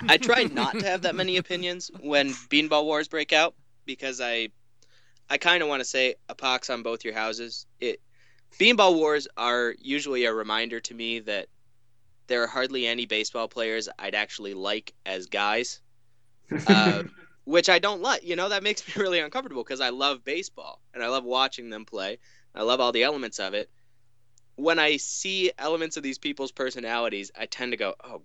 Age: 20-39